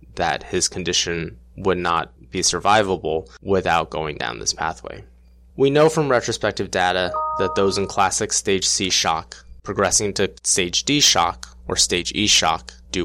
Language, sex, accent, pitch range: English, male, American, 85-100 Hz